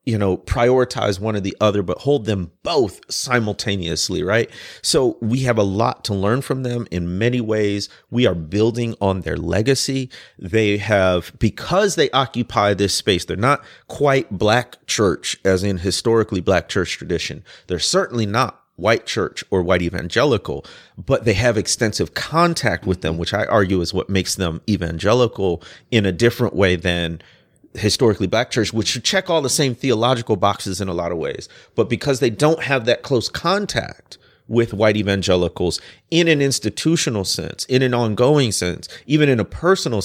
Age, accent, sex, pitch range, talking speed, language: 30-49, American, male, 95-130 Hz, 175 wpm, English